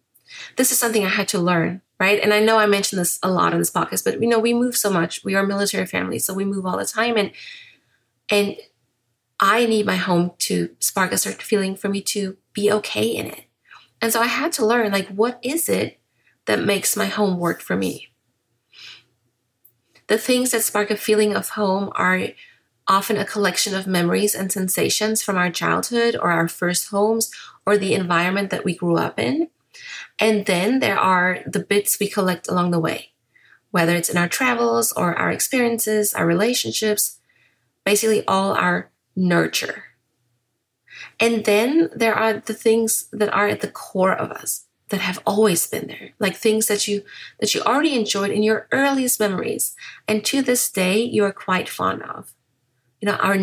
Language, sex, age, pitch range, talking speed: English, female, 20-39, 180-225 Hz, 190 wpm